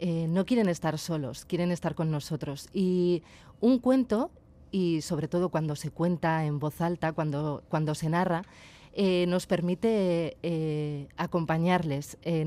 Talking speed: 155 wpm